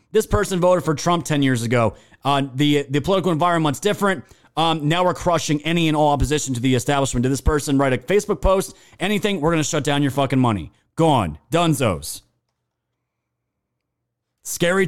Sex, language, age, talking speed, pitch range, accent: male, English, 30-49, 180 wpm, 135-175 Hz, American